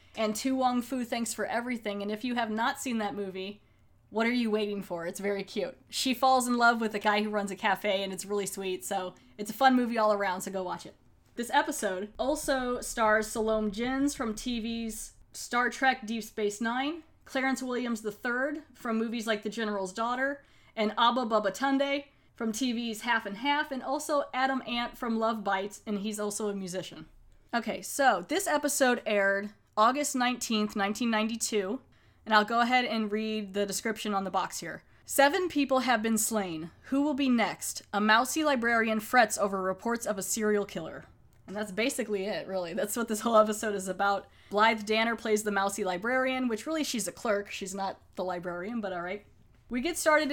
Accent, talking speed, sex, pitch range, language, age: American, 195 wpm, female, 205-245 Hz, English, 20-39